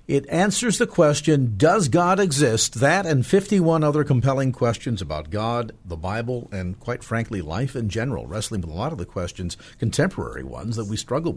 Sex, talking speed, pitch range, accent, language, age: male, 185 wpm, 105-140 Hz, American, English, 50-69